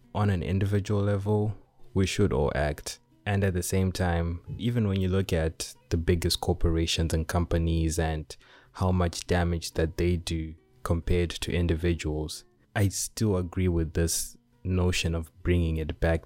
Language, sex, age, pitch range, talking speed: English, male, 20-39, 80-90 Hz, 160 wpm